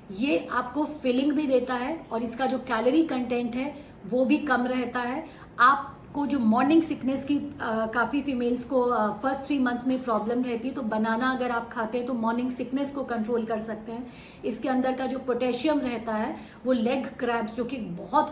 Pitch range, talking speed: 225-265 Hz, 195 wpm